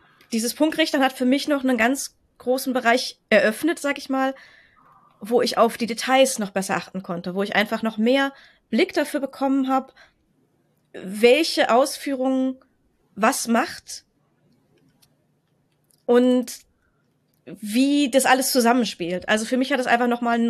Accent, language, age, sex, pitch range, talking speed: German, German, 20-39, female, 215-265 Hz, 145 wpm